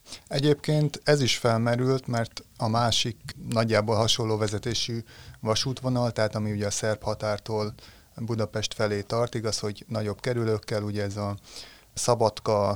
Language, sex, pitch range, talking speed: Hungarian, male, 105-115 Hz, 130 wpm